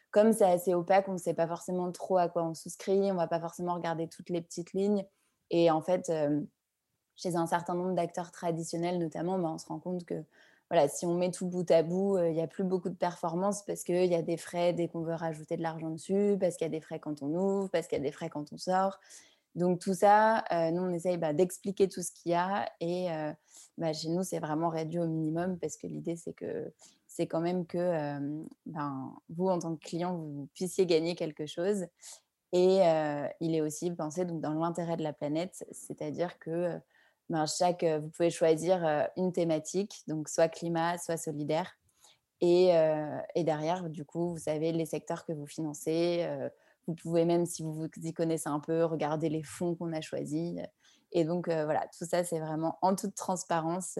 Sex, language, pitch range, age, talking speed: female, French, 160-180 Hz, 20-39, 230 wpm